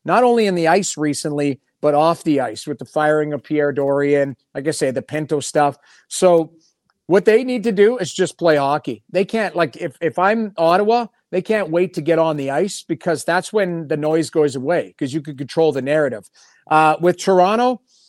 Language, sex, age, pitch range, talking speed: English, male, 40-59, 155-195 Hz, 210 wpm